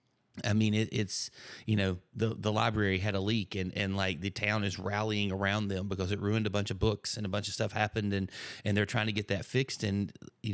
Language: English